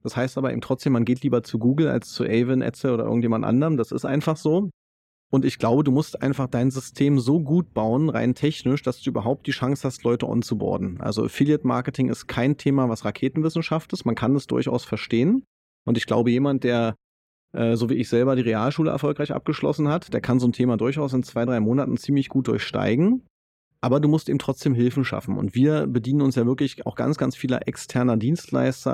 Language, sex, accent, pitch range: German, male, German, 120-140 Hz